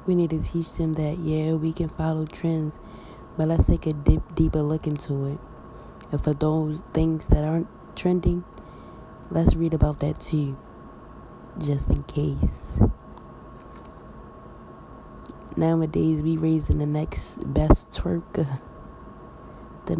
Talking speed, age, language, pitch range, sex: 125 wpm, 20-39, English, 150-170 Hz, female